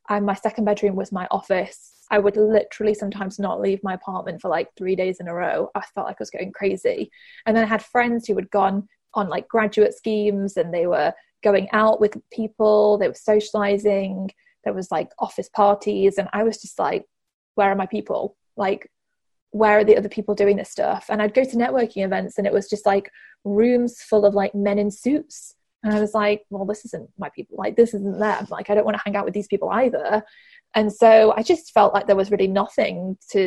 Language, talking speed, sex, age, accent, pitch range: English, 225 wpm, female, 20-39, British, 195-225 Hz